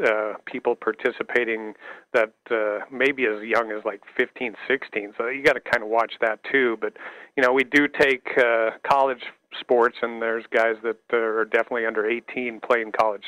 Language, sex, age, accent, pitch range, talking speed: English, male, 40-59, American, 110-125 Hz, 180 wpm